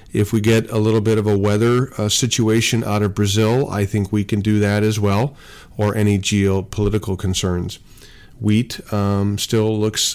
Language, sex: English, male